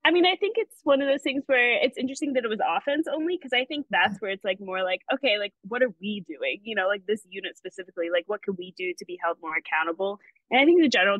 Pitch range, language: 185-250 Hz, English